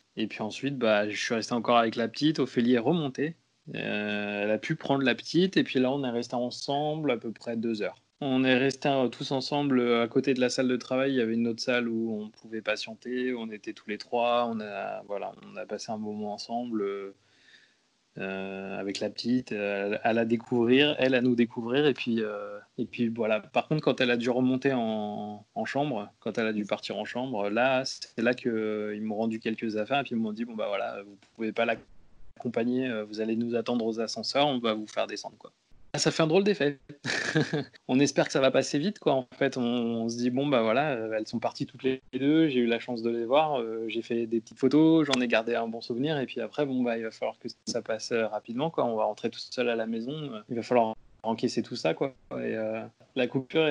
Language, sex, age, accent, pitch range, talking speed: French, male, 20-39, French, 110-130 Hz, 240 wpm